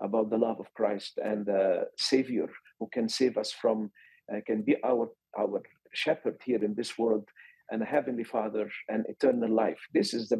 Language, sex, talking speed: English, male, 190 wpm